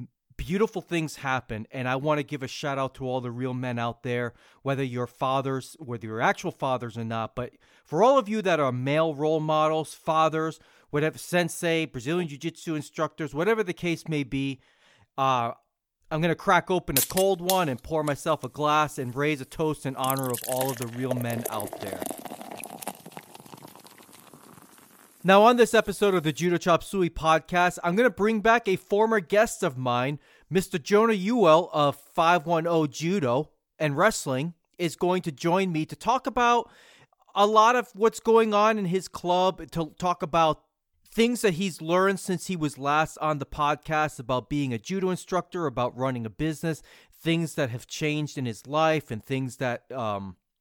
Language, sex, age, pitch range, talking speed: English, male, 30-49, 135-180 Hz, 185 wpm